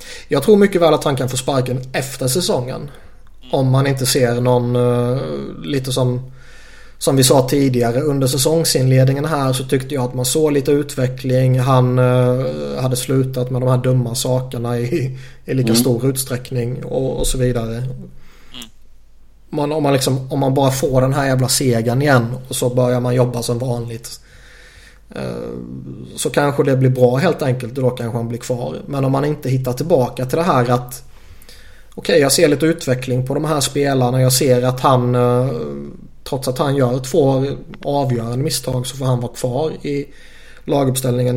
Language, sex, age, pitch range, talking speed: Swedish, male, 20-39, 125-135 Hz, 175 wpm